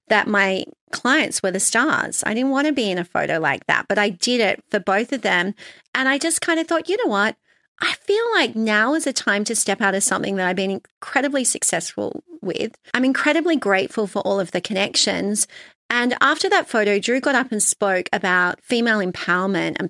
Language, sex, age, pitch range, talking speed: English, female, 40-59, 195-265 Hz, 215 wpm